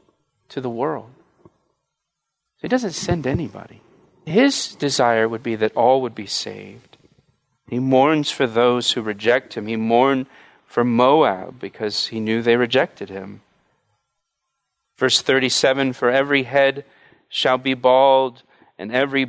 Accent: American